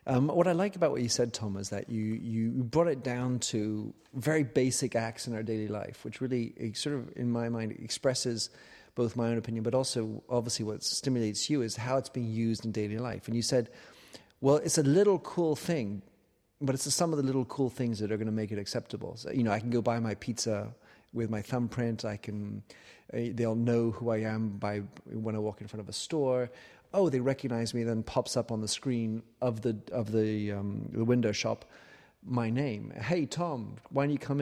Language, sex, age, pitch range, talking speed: English, male, 40-59, 110-135 Hz, 225 wpm